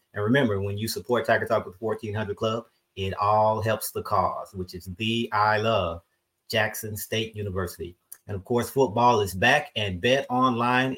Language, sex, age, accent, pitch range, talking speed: English, male, 30-49, American, 105-125 Hz, 180 wpm